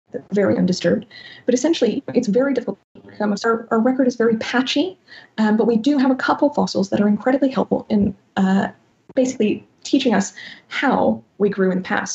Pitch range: 195-245 Hz